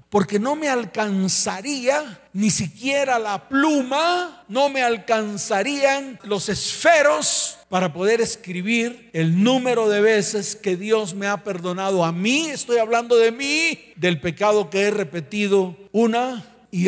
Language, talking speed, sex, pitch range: Spanish, 135 wpm, male, 180-255 Hz